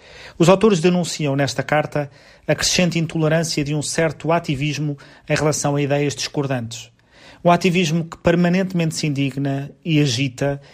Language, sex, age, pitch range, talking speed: Portuguese, male, 40-59, 135-160 Hz, 140 wpm